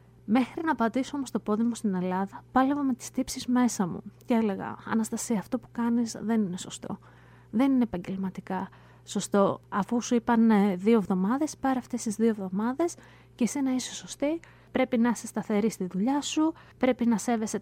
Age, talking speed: 20-39, 180 wpm